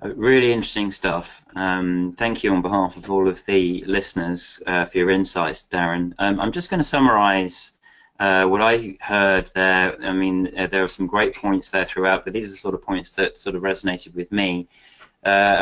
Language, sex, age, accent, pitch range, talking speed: English, male, 20-39, British, 95-105 Hz, 205 wpm